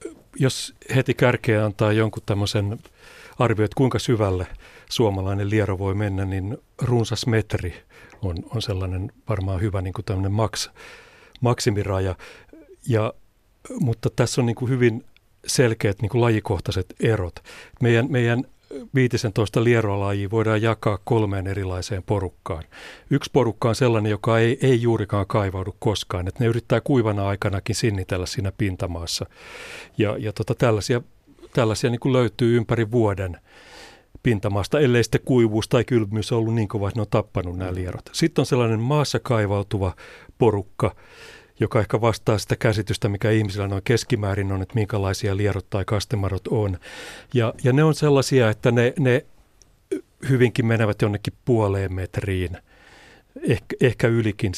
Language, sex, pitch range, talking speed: Finnish, male, 100-120 Hz, 140 wpm